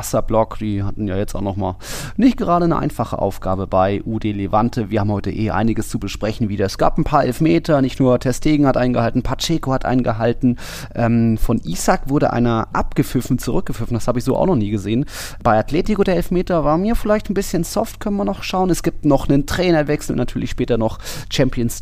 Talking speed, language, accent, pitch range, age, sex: 205 wpm, German, German, 105-130 Hz, 30-49, male